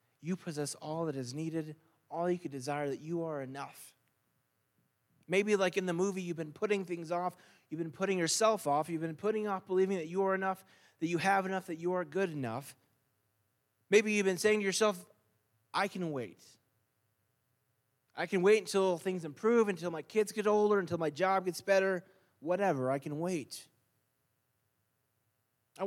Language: English